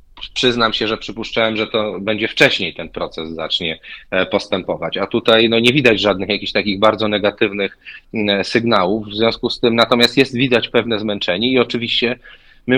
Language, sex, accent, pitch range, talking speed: Polish, male, native, 105-120 Hz, 160 wpm